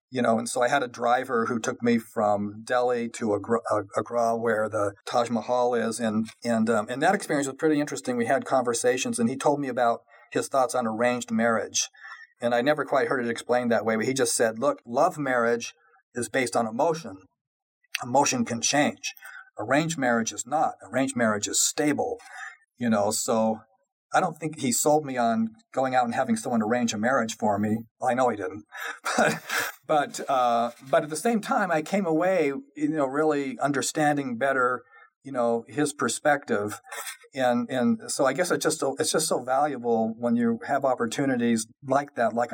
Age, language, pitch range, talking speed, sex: 40-59, English, 115-145 Hz, 190 wpm, male